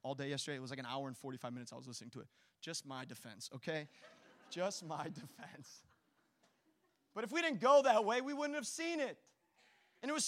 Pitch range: 200-280 Hz